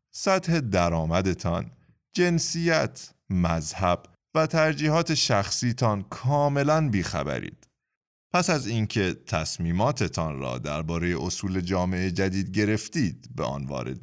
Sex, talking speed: male, 95 wpm